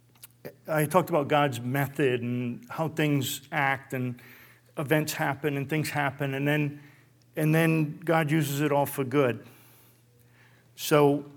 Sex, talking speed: male, 135 wpm